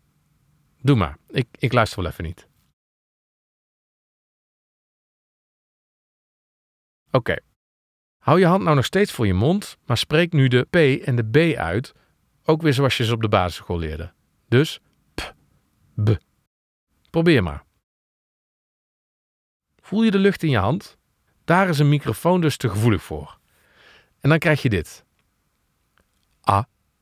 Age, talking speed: 50-69, 140 wpm